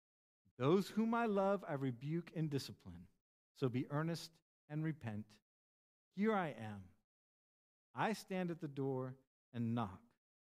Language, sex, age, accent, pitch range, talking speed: English, male, 50-69, American, 120-170 Hz, 130 wpm